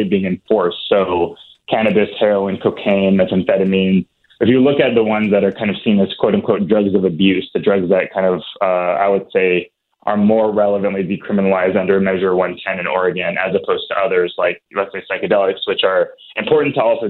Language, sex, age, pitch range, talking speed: English, male, 20-39, 95-110 Hz, 190 wpm